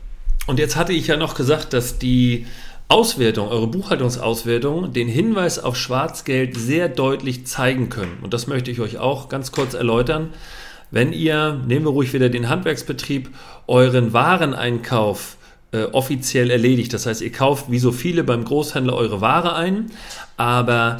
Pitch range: 120-155 Hz